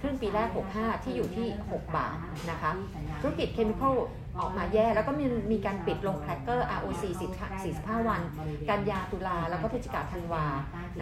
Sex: female